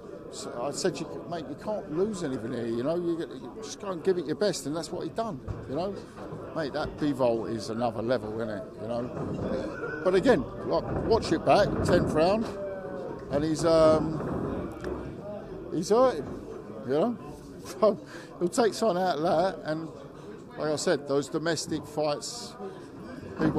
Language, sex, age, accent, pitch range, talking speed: English, male, 50-69, British, 125-155 Hz, 165 wpm